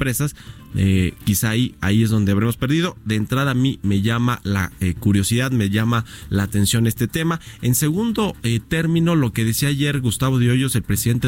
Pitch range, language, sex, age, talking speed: 105-135 Hz, Spanish, male, 30-49, 190 wpm